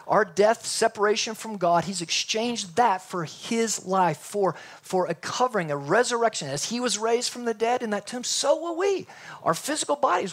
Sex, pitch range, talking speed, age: male, 175-230 Hz, 190 wpm, 50-69